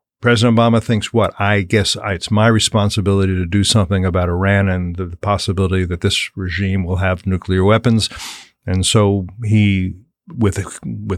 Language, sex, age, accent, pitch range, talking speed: English, male, 50-69, American, 95-115 Hz, 150 wpm